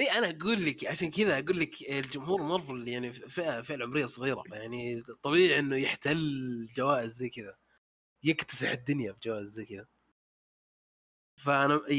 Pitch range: 115-150 Hz